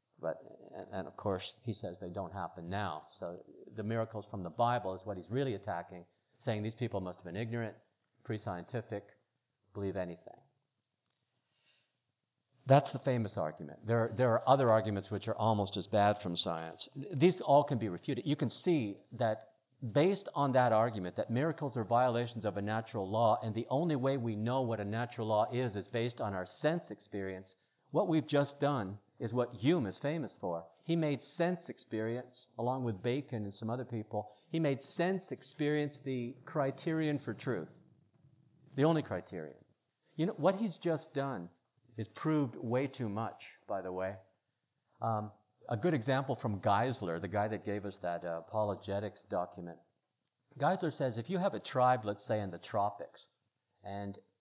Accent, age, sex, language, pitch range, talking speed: American, 50-69, male, English, 100-135 Hz, 175 wpm